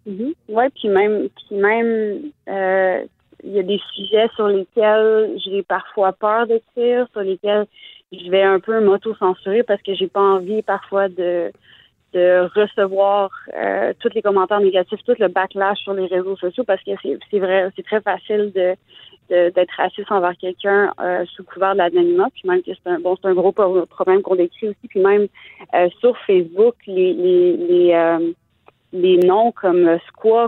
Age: 30-49